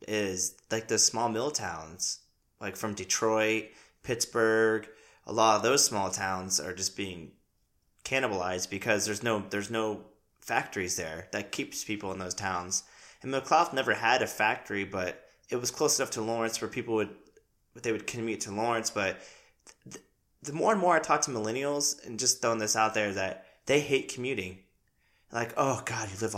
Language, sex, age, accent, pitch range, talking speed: English, male, 20-39, American, 105-125 Hz, 180 wpm